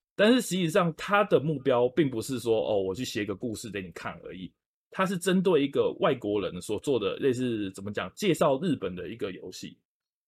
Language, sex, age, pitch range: Chinese, male, 20-39, 115-165 Hz